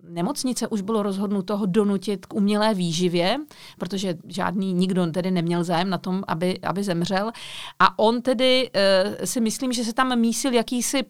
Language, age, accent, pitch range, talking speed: Czech, 40-59, native, 190-245 Hz, 160 wpm